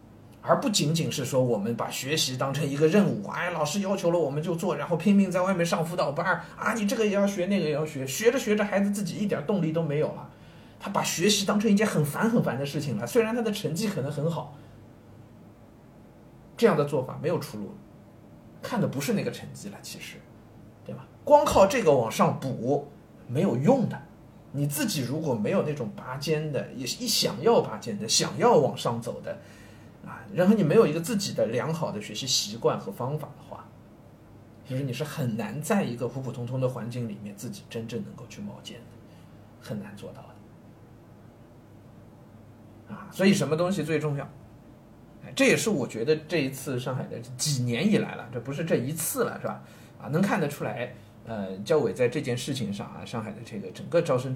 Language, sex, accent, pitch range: Chinese, male, native, 120-180 Hz